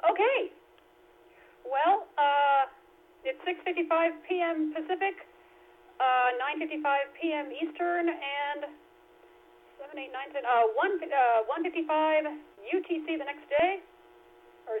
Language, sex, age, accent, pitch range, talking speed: English, female, 40-59, American, 240-325 Hz, 130 wpm